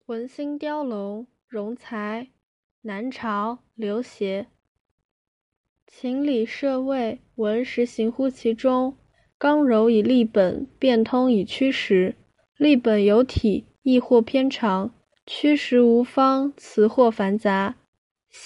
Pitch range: 215-265 Hz